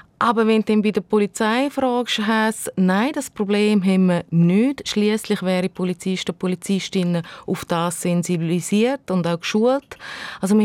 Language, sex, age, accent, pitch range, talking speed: German, female, 30-49, Austrian, 185-225 Hz, 170 wpm